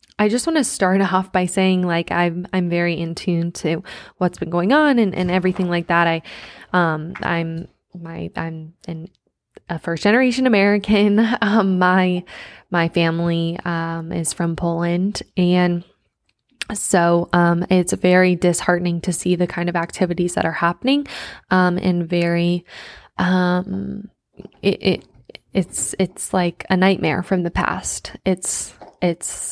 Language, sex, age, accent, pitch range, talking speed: English, female, 10-29, American, 175-195 Hz, 145 wpm